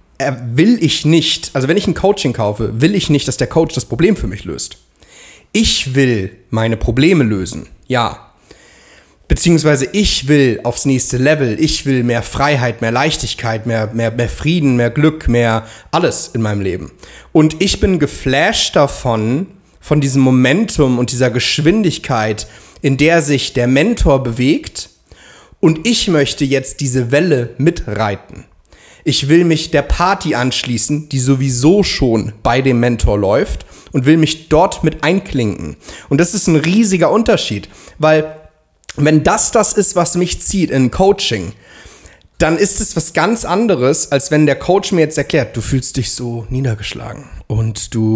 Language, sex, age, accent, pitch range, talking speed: German, male, 30-49, German, 120-160 Hz, 160 wpm